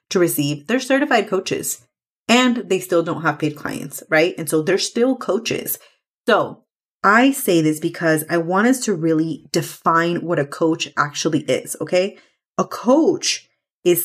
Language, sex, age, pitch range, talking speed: English, female, 30-49, 165-220 Hz, 160 wpm